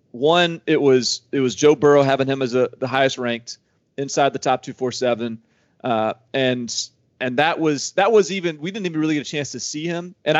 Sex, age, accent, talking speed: male, 40-59, American, 225 wpm